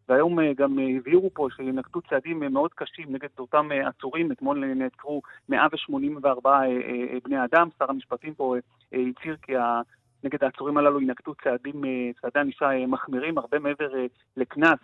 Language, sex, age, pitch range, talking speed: Hebrew, male, 30-49, 130-170 Hz, 130 wpm